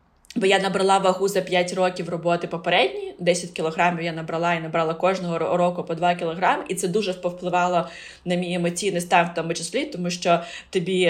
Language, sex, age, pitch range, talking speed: Ukrainian, female, 20-39, 170-190 Hz, 185 wpm